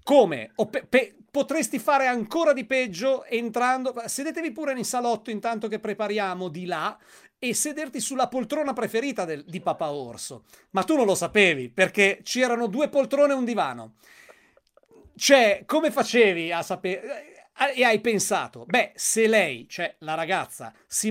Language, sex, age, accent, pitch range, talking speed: Italian, male, 40-59, native, 190-250 Hz, 155 wpm